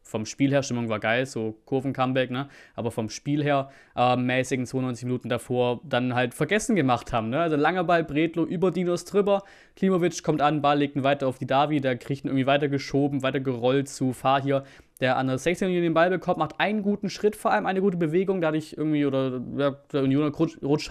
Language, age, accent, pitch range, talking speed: German, 20-39, German, 130-150 Hz, 215 wpm